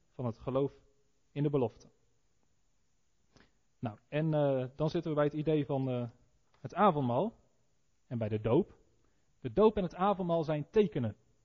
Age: 40-59